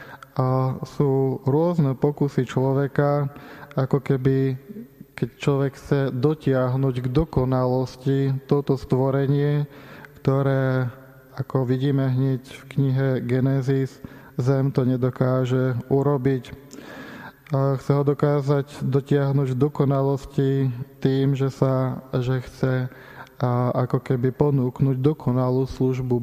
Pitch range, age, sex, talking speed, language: 130-145 Hz, 20-39, male, 100 wpm, Slovak